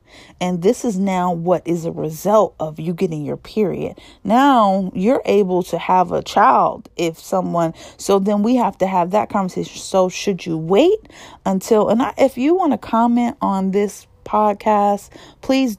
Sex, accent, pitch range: female, American, 180-225 Hz